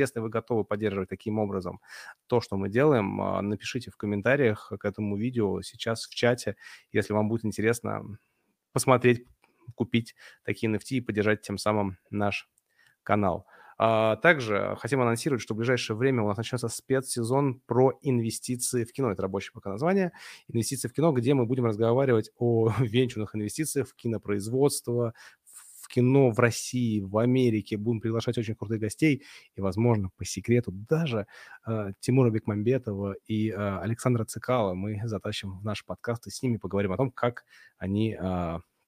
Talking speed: 155 wpm